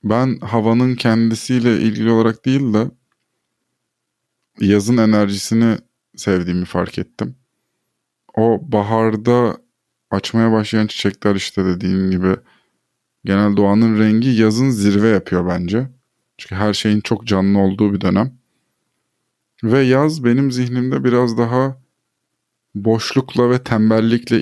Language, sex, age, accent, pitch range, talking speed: Turkish, male, 20-39, native, 100-120 Hz, 110 wpm